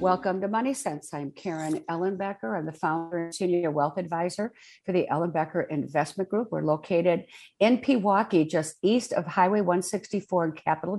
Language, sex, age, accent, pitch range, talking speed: English, female, 50-69, American, 155-185 Hz, 165 wpm